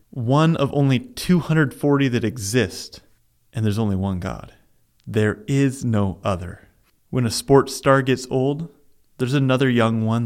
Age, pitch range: 30-49, 105-140 Hz